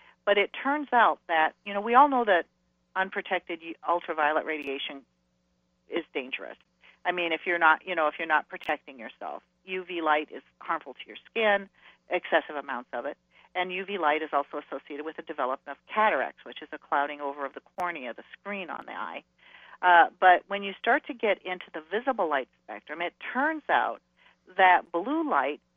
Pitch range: 155-215 Hz